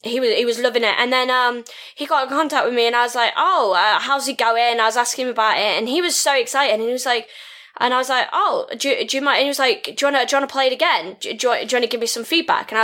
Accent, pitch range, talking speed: British, 220-265 Hz, 350 wpm